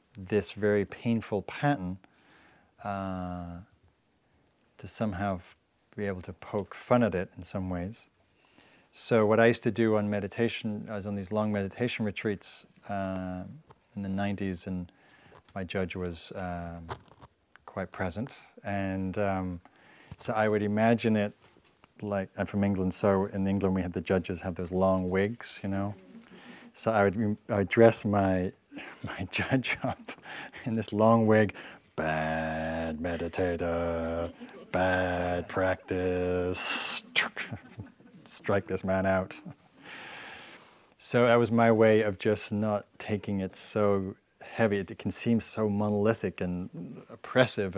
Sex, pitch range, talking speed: male, 90-110 Hz, 135 wpm